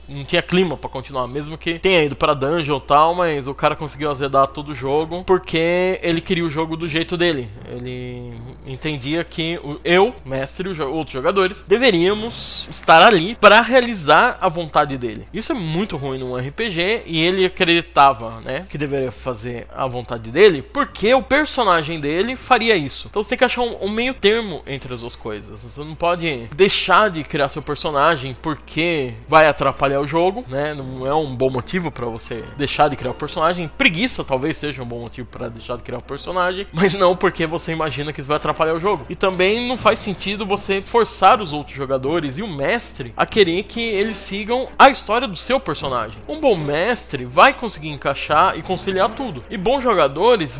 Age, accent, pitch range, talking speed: 20-39, Brazilian, 140-195 Hz, 195 wpm